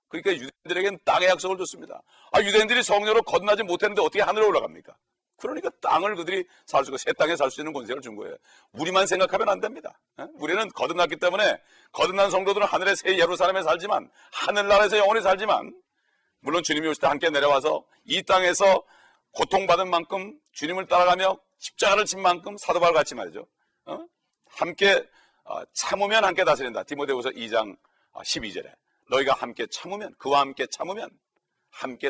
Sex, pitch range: male, 150-205 Hz